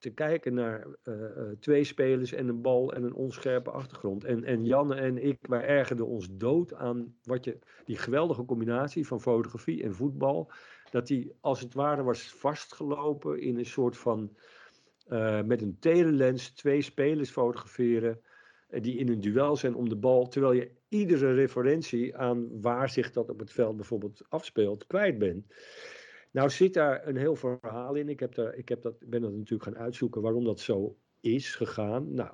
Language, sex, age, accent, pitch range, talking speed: Dutch, male, 50-69, Dutch, 115-140 Hz, 180 wpm